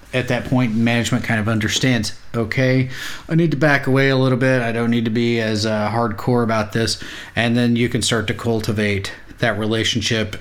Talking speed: 200 wpm